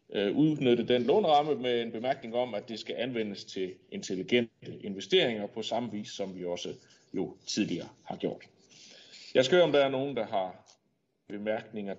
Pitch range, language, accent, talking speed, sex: 105-140 Hz, Danish, native, 170 wpm, male